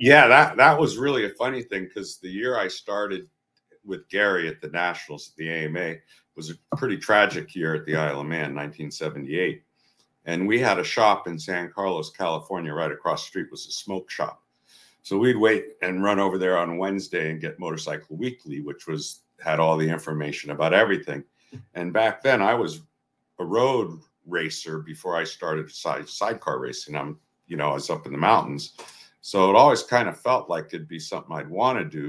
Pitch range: 75-95 Hz